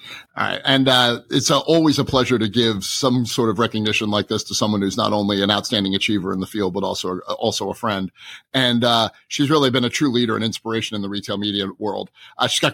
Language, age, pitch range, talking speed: English, 30-49, 105-140 Hz, 245 wpm